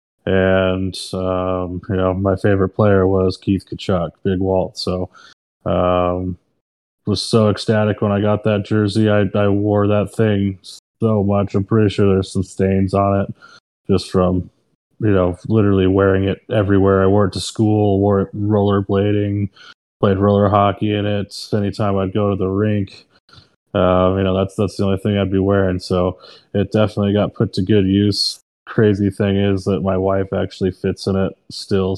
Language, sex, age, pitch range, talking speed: English, male, 20-39, 95-105 Hz, 175 wpm